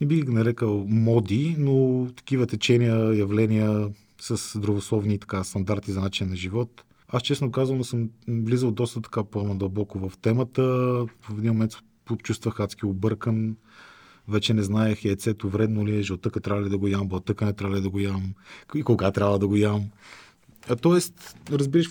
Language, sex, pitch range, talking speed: Bulgarian, male, 105-125 Hz, 165 wpm